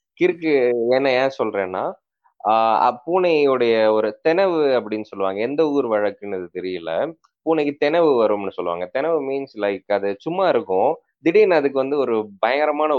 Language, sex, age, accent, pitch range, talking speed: Tamil, male, 20-39, native, 115-160 Hz, 135 wpm